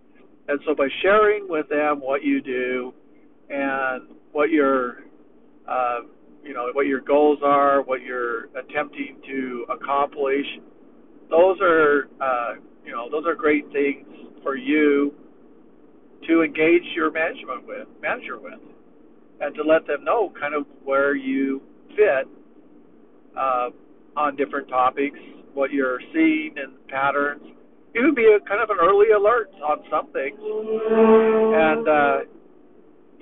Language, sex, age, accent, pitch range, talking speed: English, male, 50-69, American, 135-165 Hz, 130 wpm